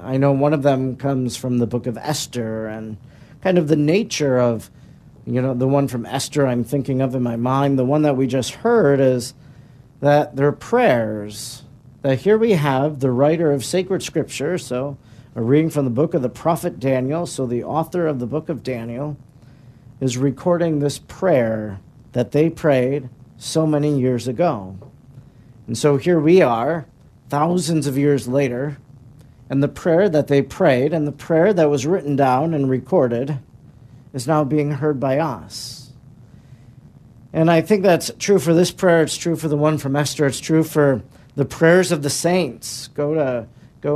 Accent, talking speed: American, 185 wpm